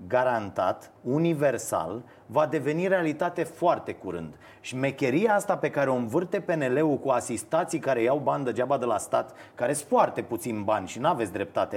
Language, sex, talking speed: Romanian, male, 170 wpm